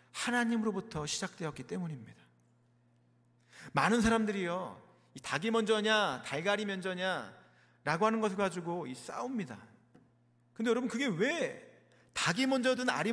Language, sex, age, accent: Korean, male, 40-59, native